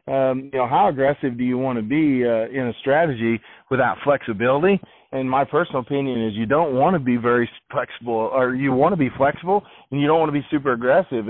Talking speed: 225 wpm